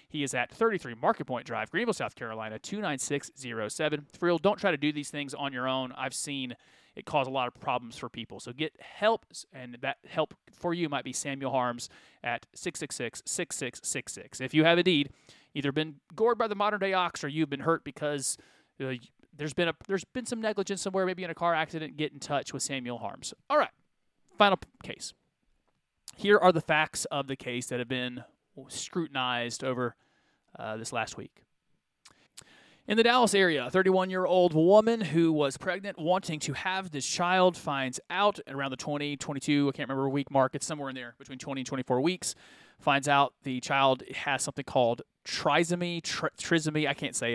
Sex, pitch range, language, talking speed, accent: male, 130-180 Hz, English, 185 wpm, American